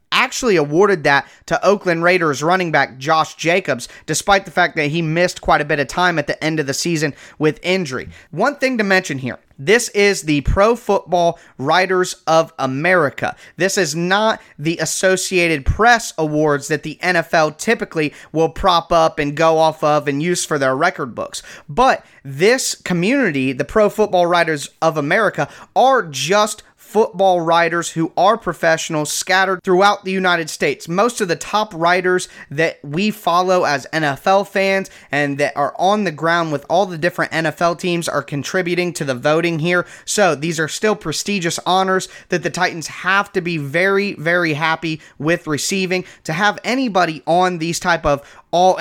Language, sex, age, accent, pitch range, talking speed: English, male, 30-49, American, 155-190 Hz, 175 wpm